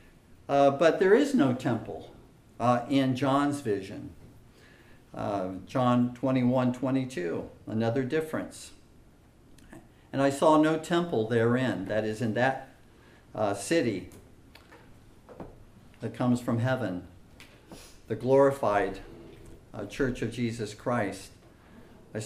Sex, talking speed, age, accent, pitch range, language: male, 110 wpm, 50-69, American, 115-160 Hz, English